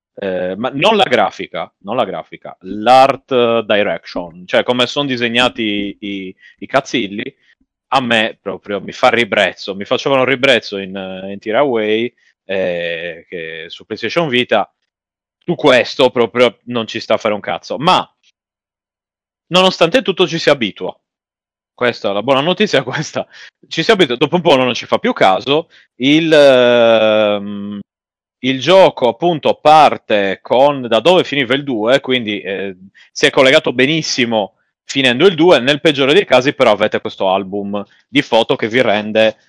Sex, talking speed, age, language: male, 155 wpm, 30-49, Italian